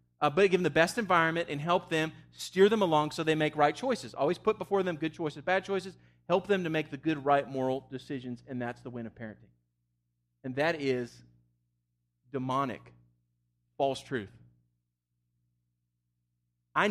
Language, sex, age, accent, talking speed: English, male, 40-59, American, 165 wpm